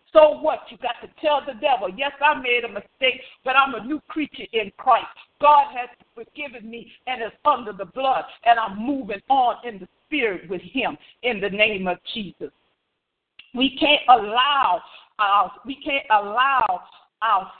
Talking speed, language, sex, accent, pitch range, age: 175 wpm, English, female, American, 230-290 Hz, 50-69